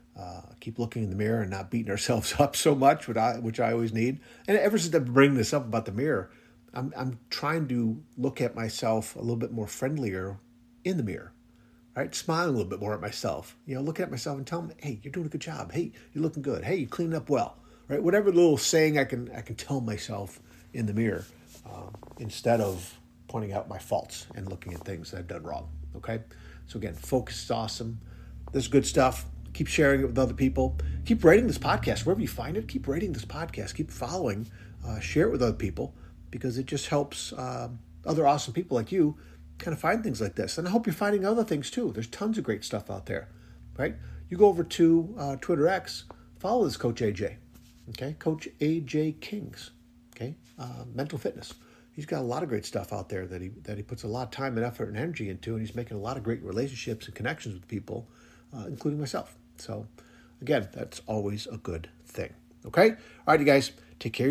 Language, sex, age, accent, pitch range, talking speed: English, male, 50-69, American, 105-140 Hz, 225 wpm